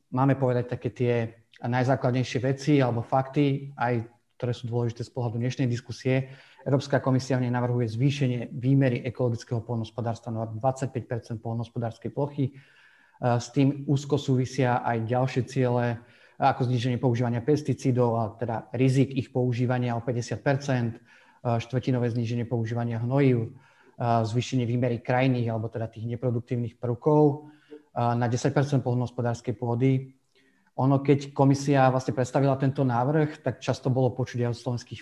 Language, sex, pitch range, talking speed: Slovak, male, 120-135 Hz, 130 wpm